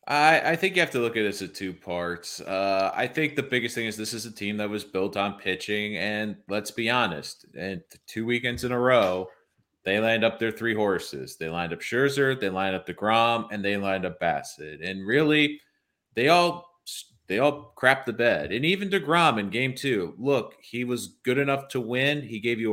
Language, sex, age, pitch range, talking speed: English, male, 30-49, 105-125 Hz, 220 wpm